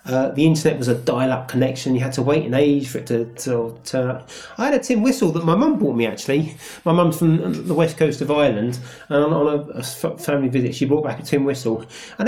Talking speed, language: 255 wpm, English